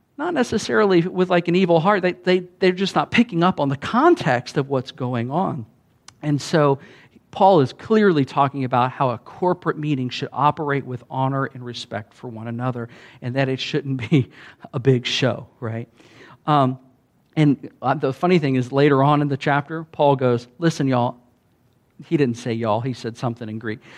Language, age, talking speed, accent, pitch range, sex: English, 50-69, 180 wpm, American, 130-170 Hz, male